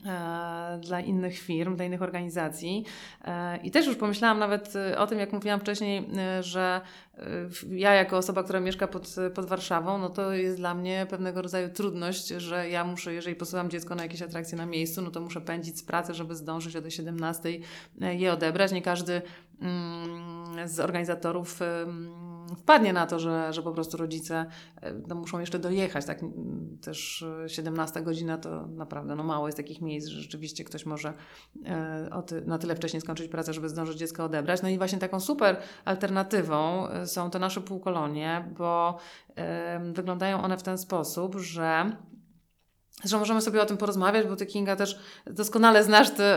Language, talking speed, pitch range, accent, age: Polish, 165 wpm, 170-195 Hz, native, 30-49